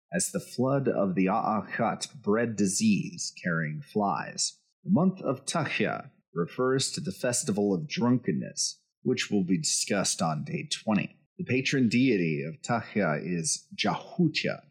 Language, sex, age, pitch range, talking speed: English, male, 30-49, 115-180 Hz, 140 wpm